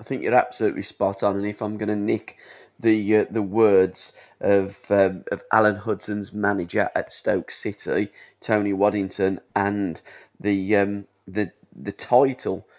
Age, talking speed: 30-49, 155 wpm